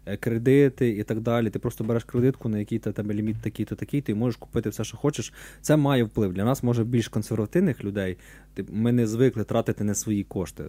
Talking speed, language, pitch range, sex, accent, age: 200 wpm, Ukrainian, 105-135 Hz, male, native, 20-39